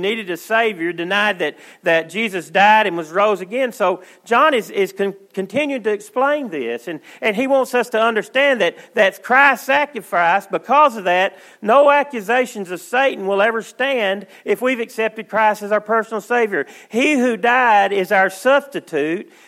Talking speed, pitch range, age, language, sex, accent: 170 wpm, 205-265 Hz, 40-59, English, male, American